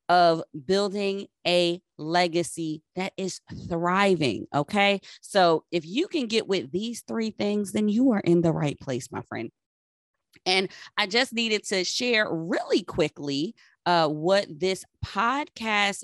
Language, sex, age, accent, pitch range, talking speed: English, female, 20-39, American, 165-220 Hz, 140 wpm